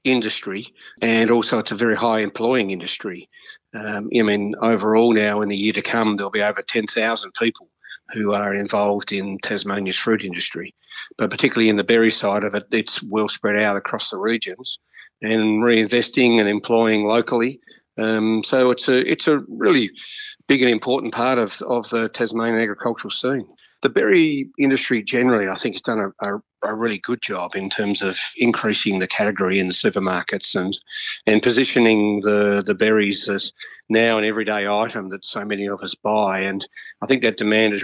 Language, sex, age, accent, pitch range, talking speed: English, male, 50-69, Australian, 105-120 Hz, 180 wpm